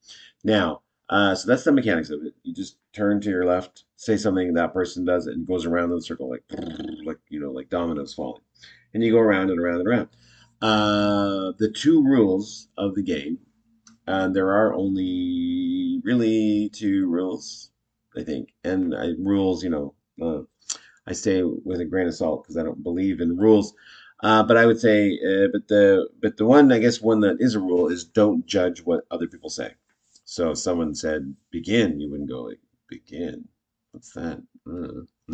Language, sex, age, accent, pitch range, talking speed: English, male, 40-59, American, 90-115 Hz, 195 wpm